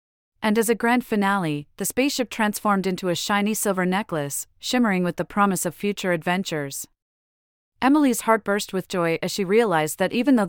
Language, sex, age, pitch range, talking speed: English, female, 30-49, 170-210 Hz, 175 wpm